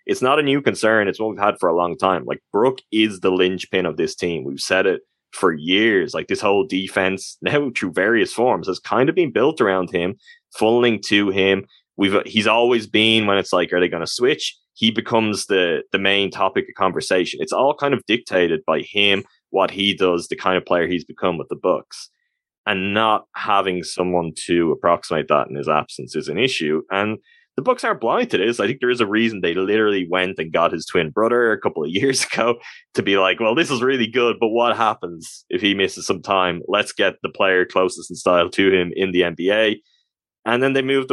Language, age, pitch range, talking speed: English, 20-39, 95-120 Hz, 225 wpm